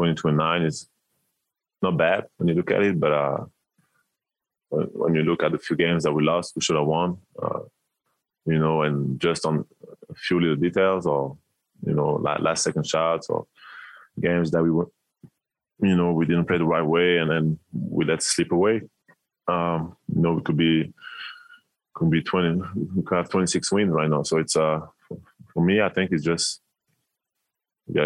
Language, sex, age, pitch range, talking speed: English, male, 20-39, 75-85 Hz, 185 wpm